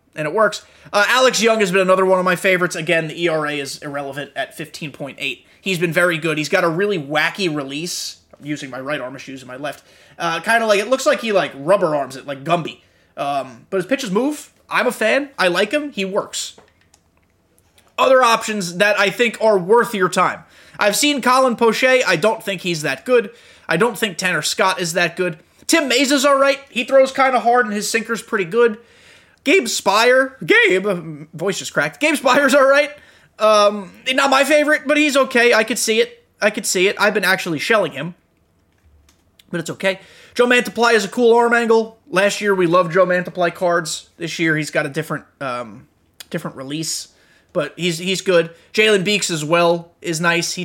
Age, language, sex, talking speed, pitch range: 20-39, English, male, 205 wpm, 170-230 Hz